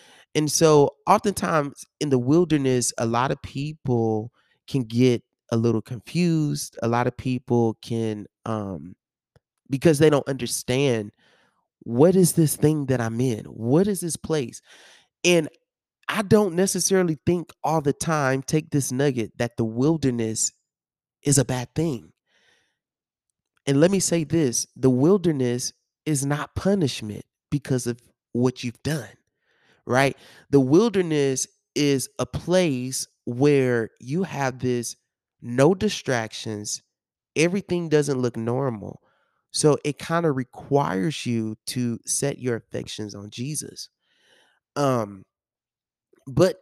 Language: English